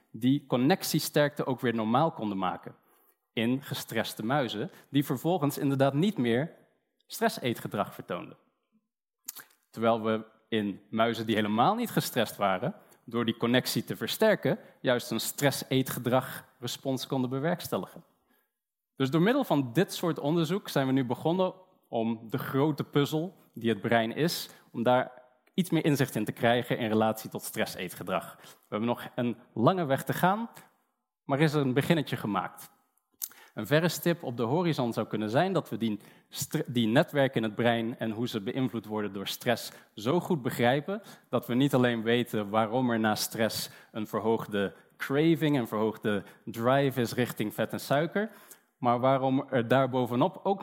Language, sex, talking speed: Dutch, male, 160 wpm